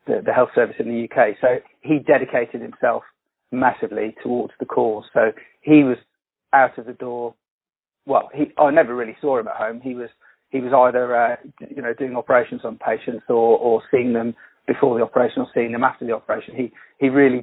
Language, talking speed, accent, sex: English, 205 wpm, British, male